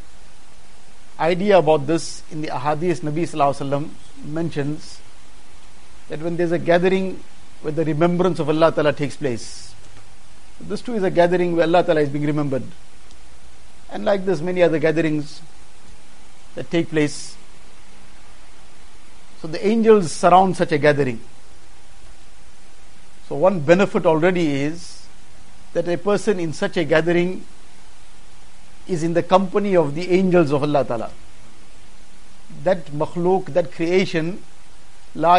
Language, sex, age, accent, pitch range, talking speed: English, male, 50-69, Indian, 115-180 Hz, 120 wpm